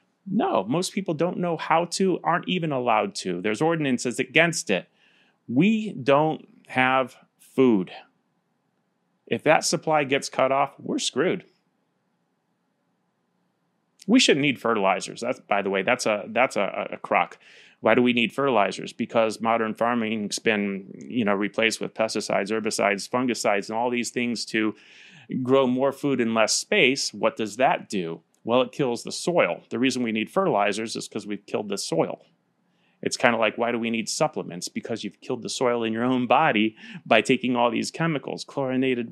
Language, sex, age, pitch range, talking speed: English, male, 30-49, 115-140 Hz, 175 wpm